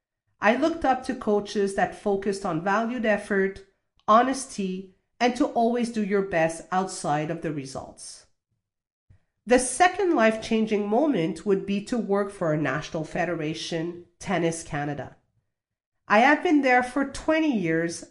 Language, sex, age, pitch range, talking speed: French, female, 40-59, 170-260 Hz, 140 wpm